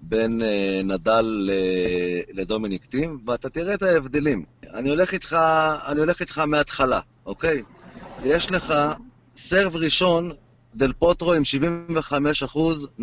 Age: 30-49